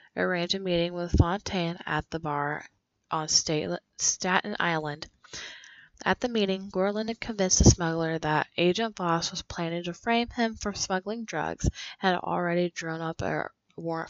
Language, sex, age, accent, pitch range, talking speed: English, female, 10-29, American, 170-195 Hz, 160 wpm